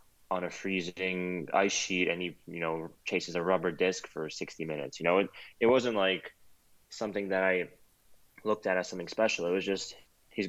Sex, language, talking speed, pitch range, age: male, English, 195 wpm, 85-95 Hz, 20-39